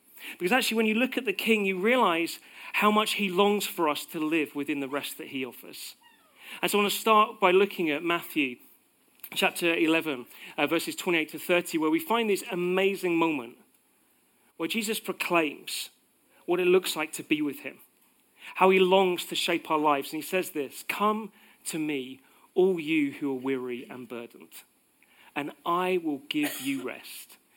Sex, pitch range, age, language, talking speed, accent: male, 145-210 Hz, 40-59, English, 185 wpm, British